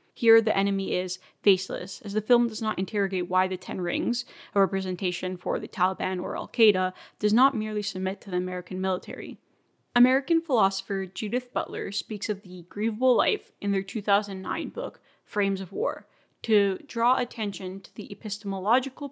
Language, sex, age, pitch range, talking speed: English, female, 20-39, 190-225 Hz, 165 wpm